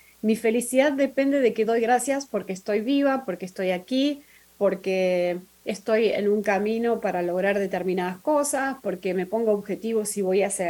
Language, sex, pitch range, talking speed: Spanish, female, 195-280 Hz, 165 wpm